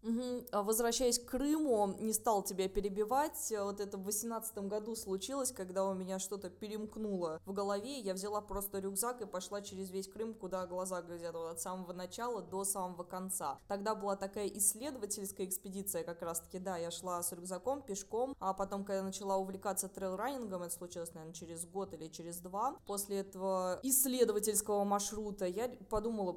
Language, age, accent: Russian, 20-39, native